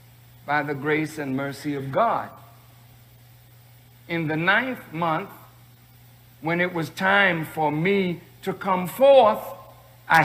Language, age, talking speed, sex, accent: English, 60-79, 125 wpm, male, American